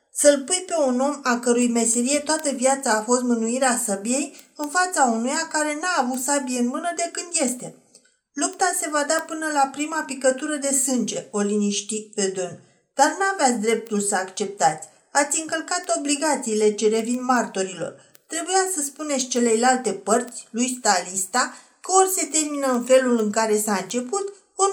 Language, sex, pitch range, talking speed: Romanian, female, 220-315 Hz, 165 wpm